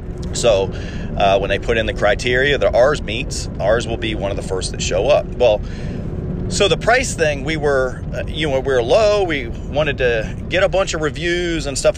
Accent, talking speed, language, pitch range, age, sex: American, 215 wpm, English, 100-135 Hz, 30-49, male